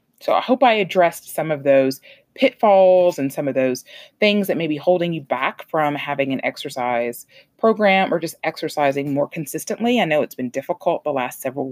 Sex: female